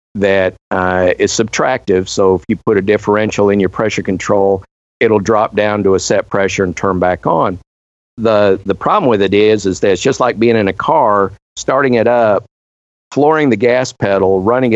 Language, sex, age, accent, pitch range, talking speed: English, male, 50-69, American, 95-110 Hz, 195 wpm